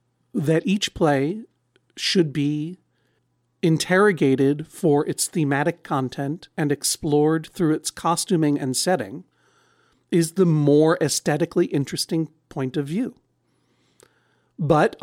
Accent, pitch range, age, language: American, 150-185 Hz, 50-69, English